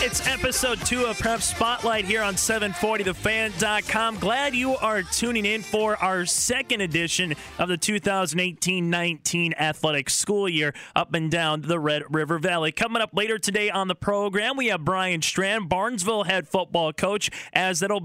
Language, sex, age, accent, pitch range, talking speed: English, male, 20-39, American, 170-205 Hz, 160 wpm